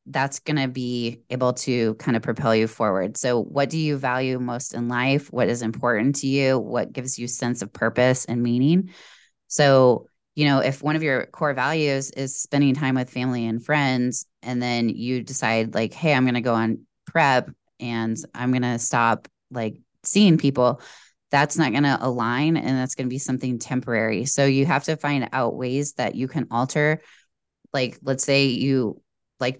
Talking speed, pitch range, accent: 195 wpm, 120-140 Hz, American